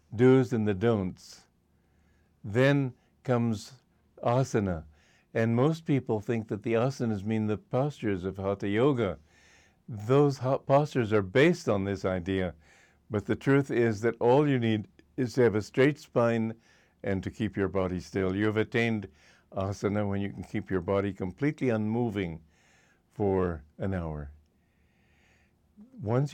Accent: American